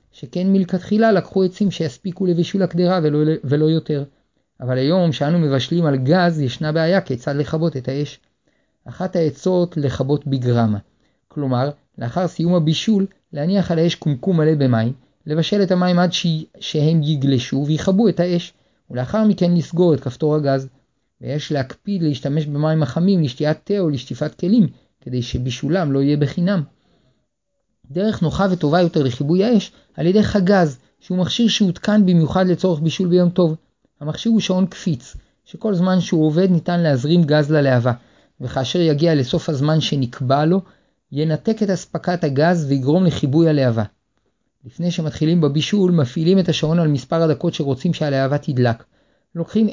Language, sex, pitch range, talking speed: Hebrew, male, 140-180 Hz, 145 wpm